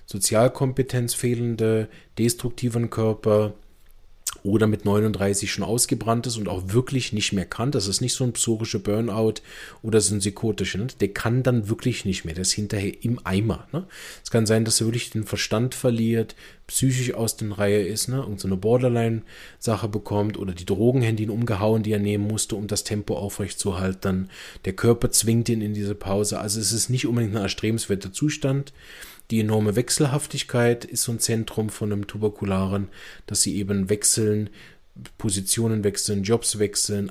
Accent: German